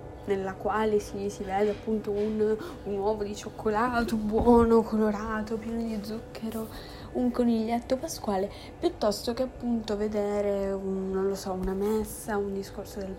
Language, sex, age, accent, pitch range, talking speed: Italian, female, 10-29, native, 205-235 Hz, 140 wpm